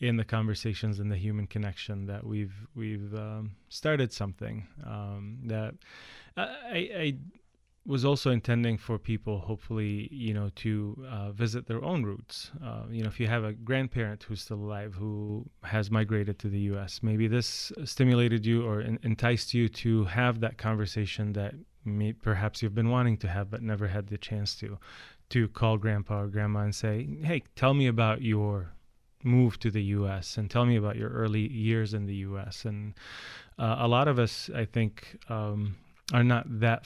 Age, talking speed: 20-39, 180 wpm